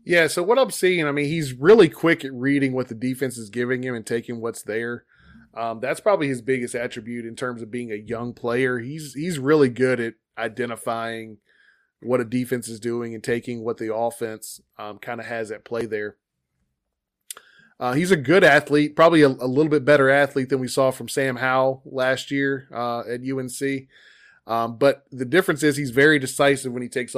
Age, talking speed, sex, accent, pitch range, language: 20-39, 205 wpm, male, American, 115-140 Hz, English